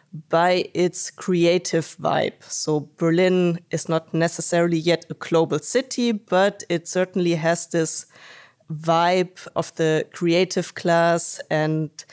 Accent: German